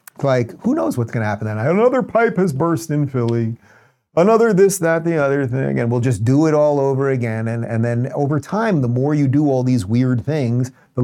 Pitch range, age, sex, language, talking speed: 120-170 Hz, 40-59, male, English, 225 wpm